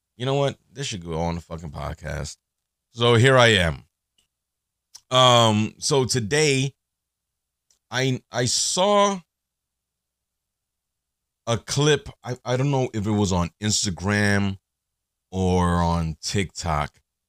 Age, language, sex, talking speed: 30-49, English, male, 120 wpm